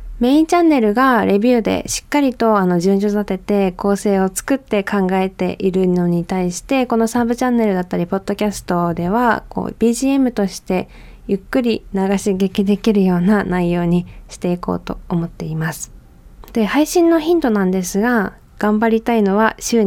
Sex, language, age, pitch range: female, Japanese, 20-39, 185-230 Hz